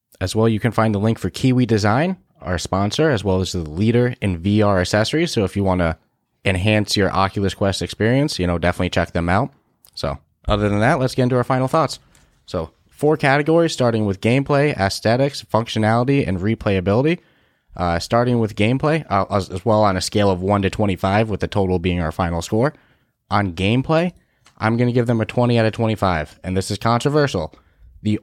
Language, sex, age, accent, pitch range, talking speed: English, male, 20-39, American, 95-120 Hz, 200 wpm